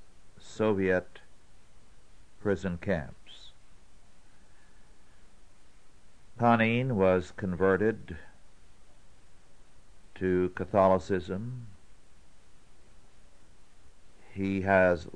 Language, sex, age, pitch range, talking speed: English, male, 60-79, 85-105 Hz, 40 wpm